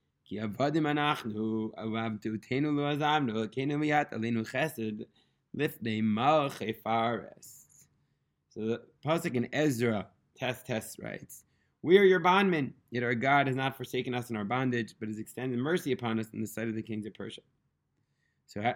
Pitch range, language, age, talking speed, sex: 115-150 Hz, English, 20-39, 155 wpm, male